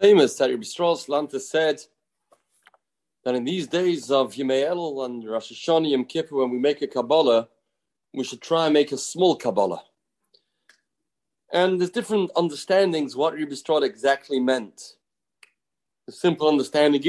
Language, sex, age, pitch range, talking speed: English, male, 40-59, 145-185 Hz, 140 wpm